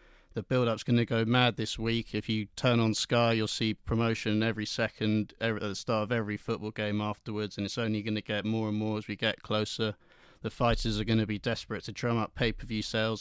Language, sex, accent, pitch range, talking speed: English, male, British, 105-120 Hz, 235 wpm